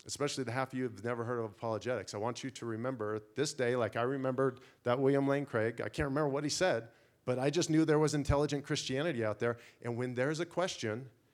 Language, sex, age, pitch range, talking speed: English, male, 40-59, 120-145 Hz, 240 wpm